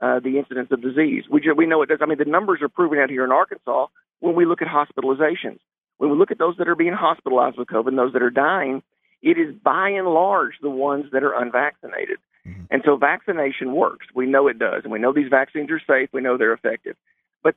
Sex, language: male, English